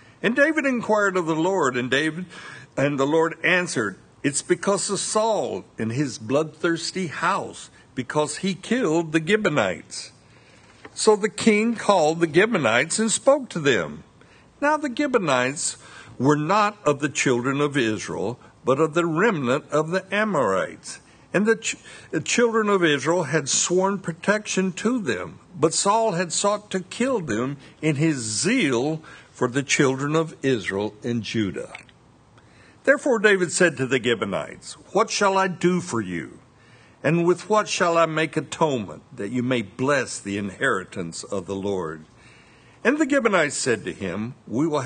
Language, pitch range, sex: English, 130-200 Hz, male